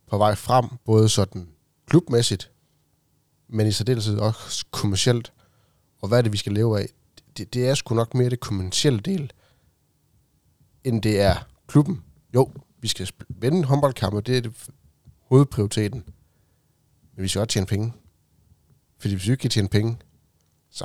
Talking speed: 160 wpm